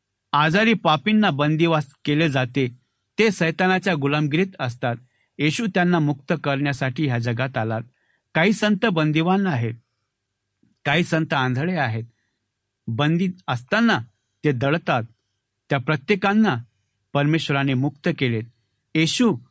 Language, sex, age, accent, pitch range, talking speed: Marathi, male, 60-79, native, 125-175 Hz, 105 wpm